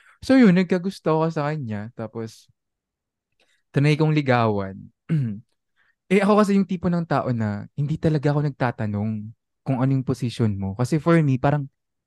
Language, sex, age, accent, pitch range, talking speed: English, male, 20-39, Filipino, 110-150 Hz, 150 wpm